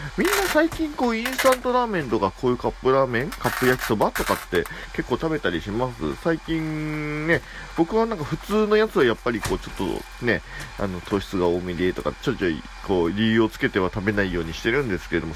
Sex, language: male, Japanese